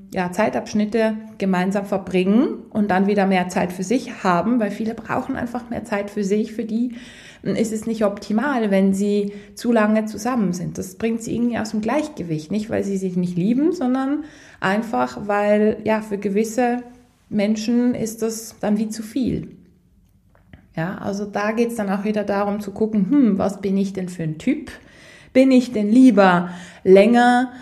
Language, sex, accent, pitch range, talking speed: German, female, German, 185-230 Hz, 180 wpm